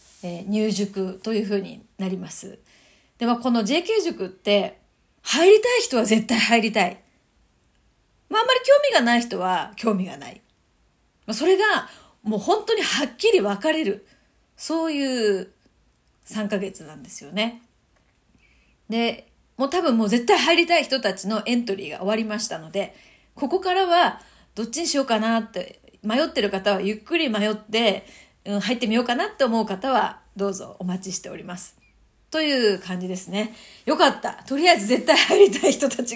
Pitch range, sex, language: 205-315 Hz, female, Japanese